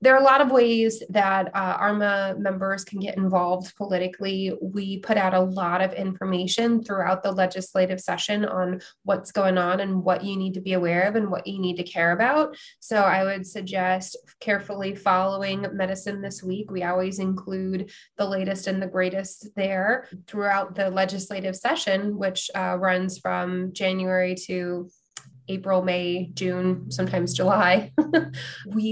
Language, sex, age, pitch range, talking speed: English, female, 20-39, 185-215 Hz, 160 wpm